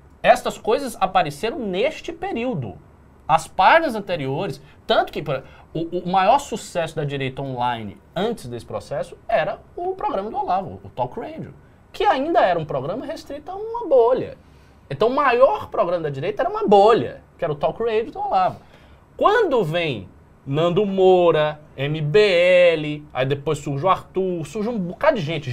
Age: 20-39